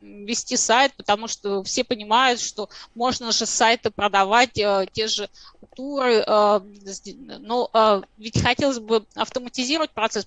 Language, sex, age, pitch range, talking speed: Russian, female, 20-39, 210-255 Hz, 115 wpm